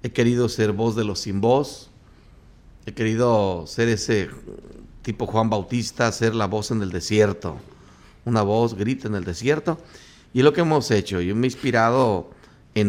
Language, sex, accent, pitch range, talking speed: Spanish, male, Mexican, 100-120 Hz, 170 wpm